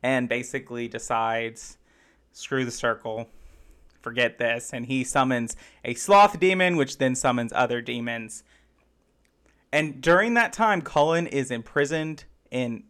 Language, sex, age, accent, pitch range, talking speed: English, male, 30-49, American, 120-145 Hz, 125 wpm